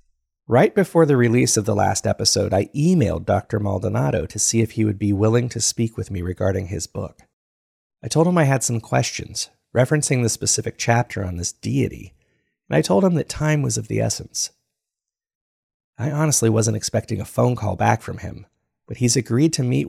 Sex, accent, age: male, American, 40-59